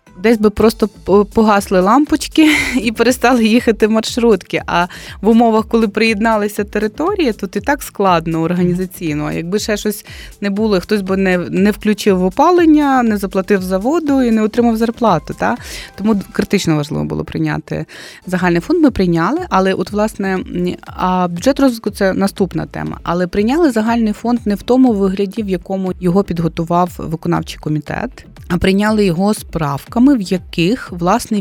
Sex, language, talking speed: female, Ukrainian, 150 wpm